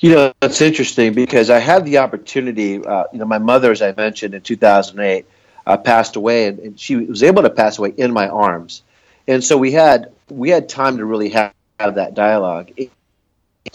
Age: 40-59